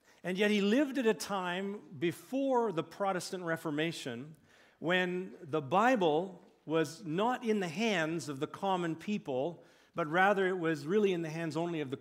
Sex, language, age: male, English, 50-69